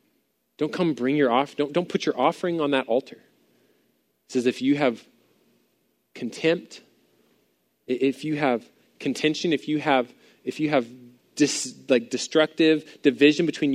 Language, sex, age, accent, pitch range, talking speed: English, male, 20-39, American, 145-205 Hz, 150 wpm